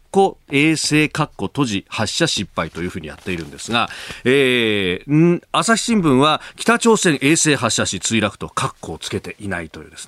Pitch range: 105-160 Hz